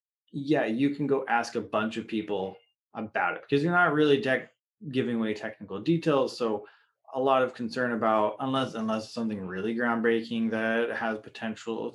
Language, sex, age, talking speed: English, male, 20-39, 165 wpm